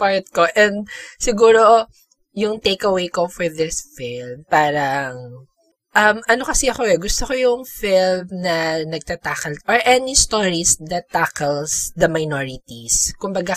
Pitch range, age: 150-200 Hz, 20-39